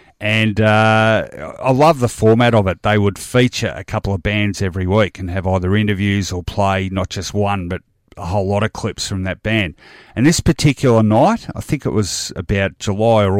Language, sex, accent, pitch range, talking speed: English, male, Australian, 95-115 Hz, 205 wpm